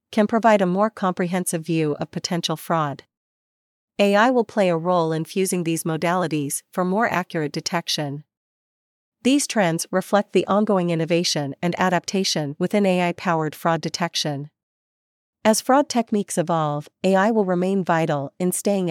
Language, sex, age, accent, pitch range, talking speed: English, female, 40-59, American, 160-195 Hz, 140 wpm